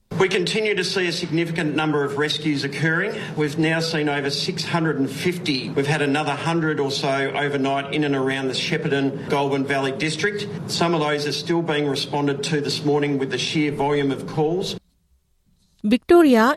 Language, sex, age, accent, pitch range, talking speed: Tamil, male, 50-69, Australian, 165-225 Hz, 170 wpm